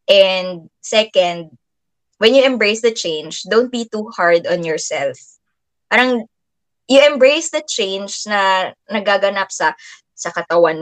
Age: 20-39